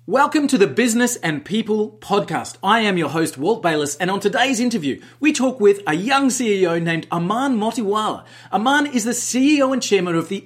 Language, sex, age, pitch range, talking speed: English, male, 30-49, 170-235 Hz, 195 wpm